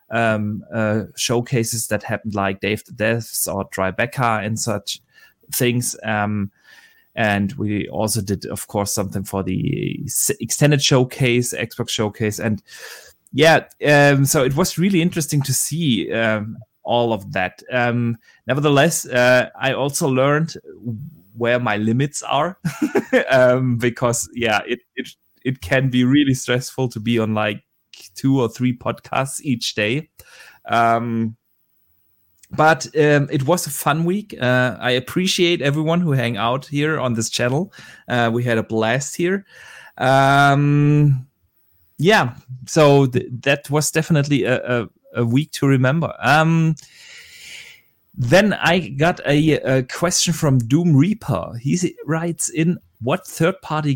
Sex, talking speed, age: male, 140 wpm, 20-39